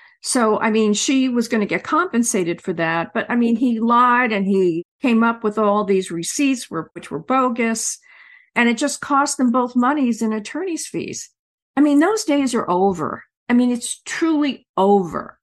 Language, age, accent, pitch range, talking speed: English, 50-69, American, 190-250 Hz, 185 wpm